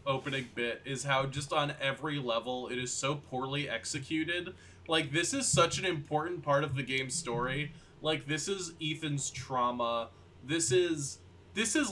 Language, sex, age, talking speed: English, male, 20-39, 165 wpm